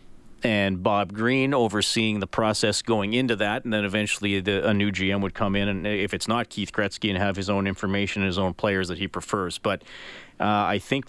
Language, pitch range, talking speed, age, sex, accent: English, 100-115 Hz, 210 wpm, 40-59, male, American